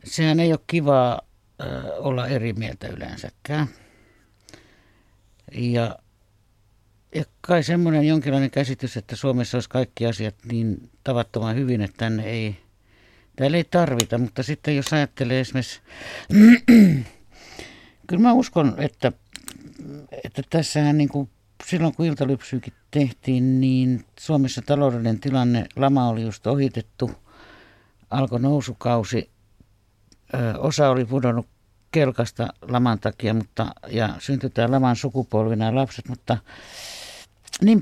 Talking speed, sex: 115 wpm, male